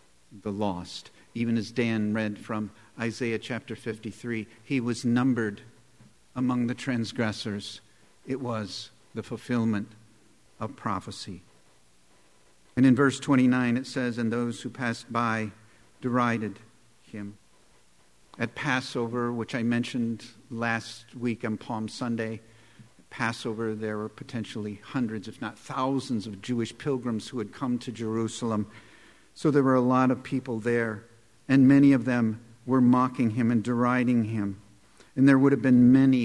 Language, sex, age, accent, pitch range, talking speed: English, male, 50-69, American, 105-125 Hz, 140 wpm